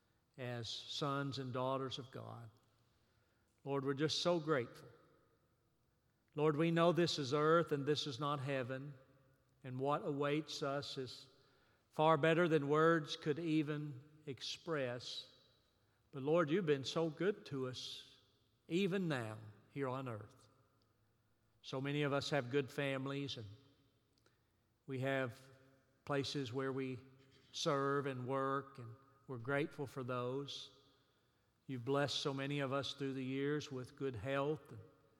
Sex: male